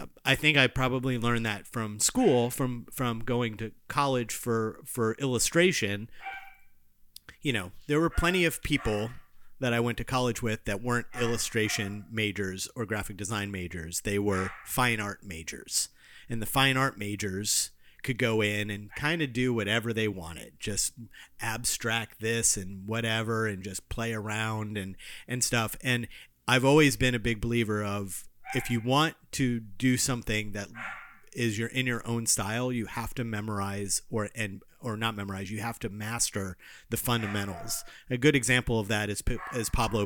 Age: 30-49